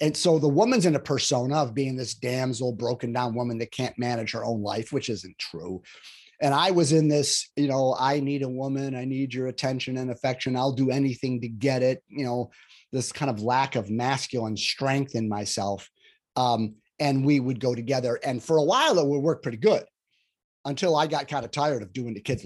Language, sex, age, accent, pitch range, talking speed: English, male, 30-49, American, 120-145 Hz, 220 wpm